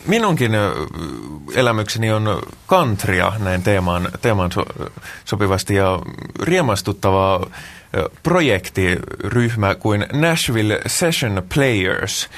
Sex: male